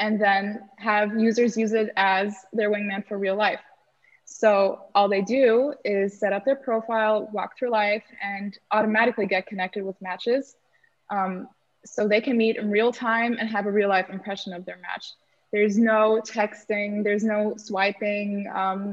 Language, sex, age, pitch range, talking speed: English, female, 20-39, 195-225 Hz, 170 wpm